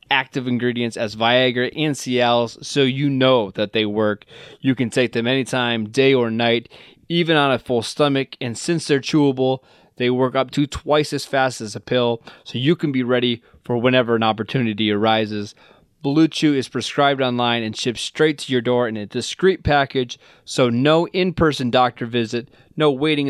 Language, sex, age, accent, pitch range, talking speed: English, male, 20-39, American, 120-145 Hz, 185 wpm